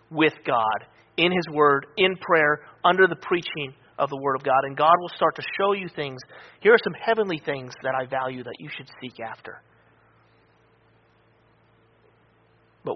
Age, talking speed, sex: 30-49, 170 wpm, male